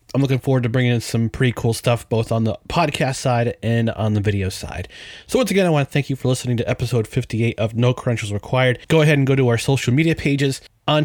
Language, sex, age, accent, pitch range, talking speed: English, male, 30-49, American, 120-150 Hz, 255 wpm